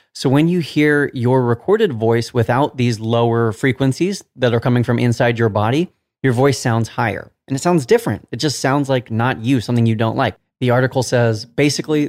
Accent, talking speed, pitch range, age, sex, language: American, 200 wpm, 115-145 Hz, 30-49, male, English